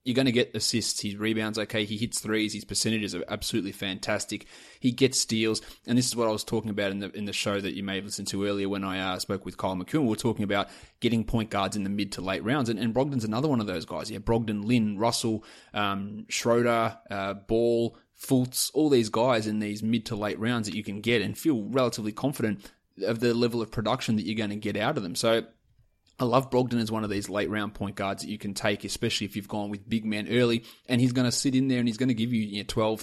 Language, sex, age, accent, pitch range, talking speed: English, male, 20-39, Australian, 105-120 Hz, 265 wpm